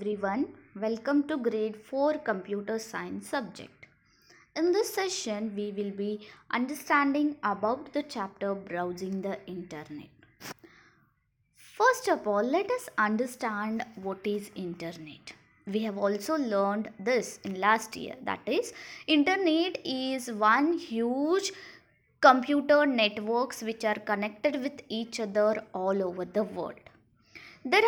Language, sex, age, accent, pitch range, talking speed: English, female, 20-39, Indian, 205-290 Hz, 125 wpm